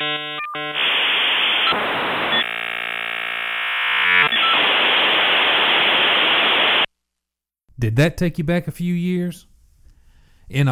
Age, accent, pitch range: 40-59, American, 115-155 Hz